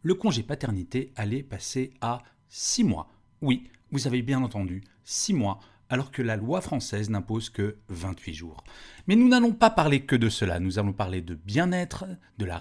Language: French